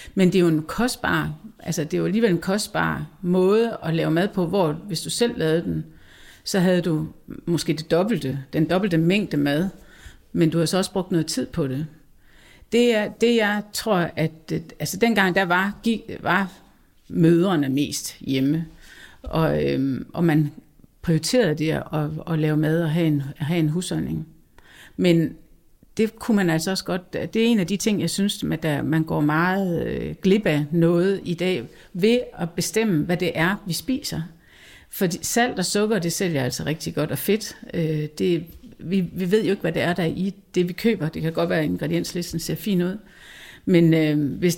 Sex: female